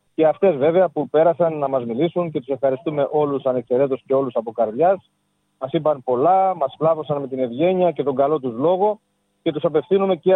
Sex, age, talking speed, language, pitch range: male, 40-59, 195 wpm, Greek, 150-180 Hz